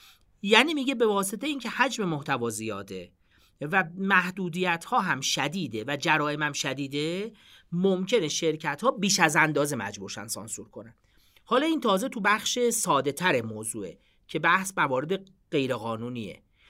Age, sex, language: 40-59, male, Persian